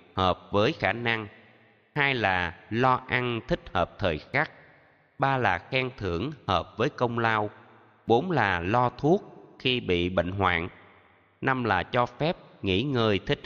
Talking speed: 155 wpm